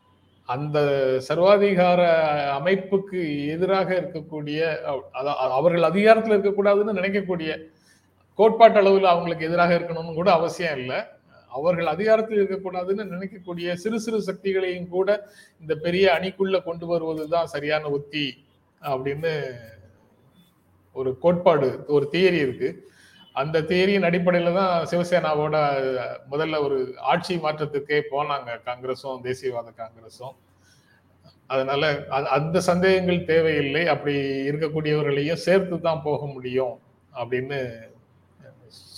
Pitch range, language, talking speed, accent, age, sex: 140-180 Hz, Tamil, 95 wpm, native, 30-49, male